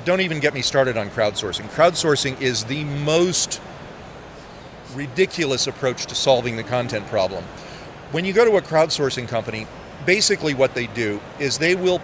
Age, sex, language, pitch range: 40-59, male, English, 120-160 Hz